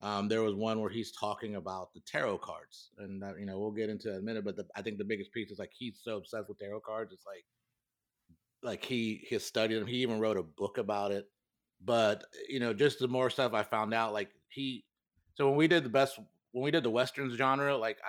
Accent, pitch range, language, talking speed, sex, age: American, 105-120 Hz, English, 255 wpm, male, 30-49